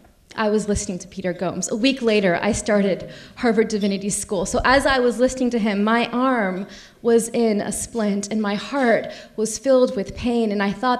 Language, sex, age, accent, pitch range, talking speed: English, female, 30-49, American, 215-270 Hz, 200 wpm